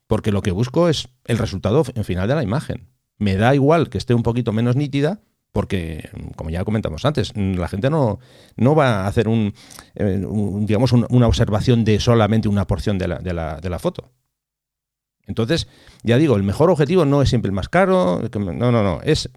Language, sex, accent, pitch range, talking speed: English, male, Spanish, 100-130 Hz, 200 wpm